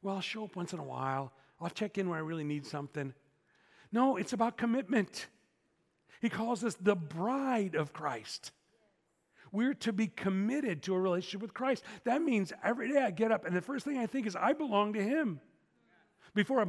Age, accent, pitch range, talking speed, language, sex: 40-59, American, 175-235 Hz, 200 wpm, English, male